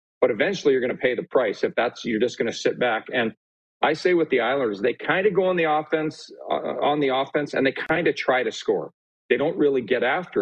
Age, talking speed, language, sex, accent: 40-59, 260 wpm, English, male, American